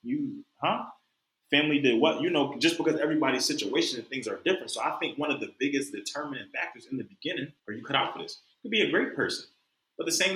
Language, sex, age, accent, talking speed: English, male, 20-39, American, 240 wpm